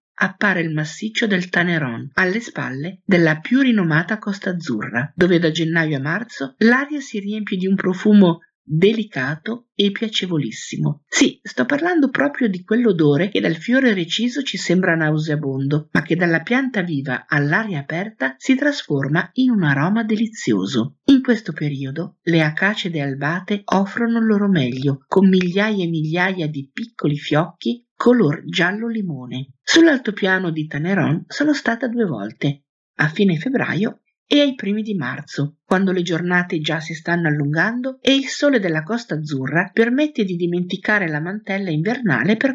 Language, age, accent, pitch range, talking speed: Italian, 50-69, native, 155-225 Hz, 150 wpm